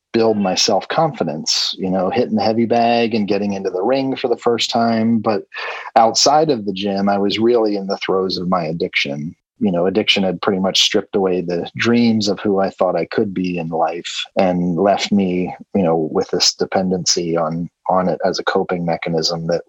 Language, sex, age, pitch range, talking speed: English, male, 30-49, 95-115 Hz, 205 wpm